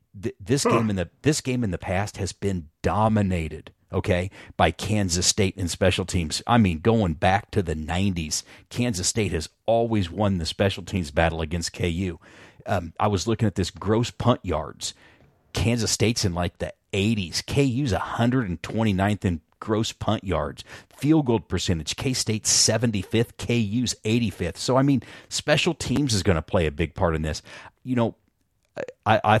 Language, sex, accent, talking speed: English, male, American, 170 wpm